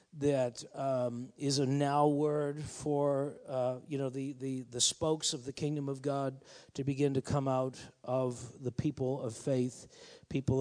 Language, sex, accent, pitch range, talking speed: English, male, American, 145-190 Hz, 170 wpm